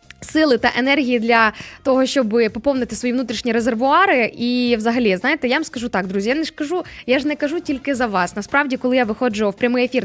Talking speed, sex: 215 wpm, female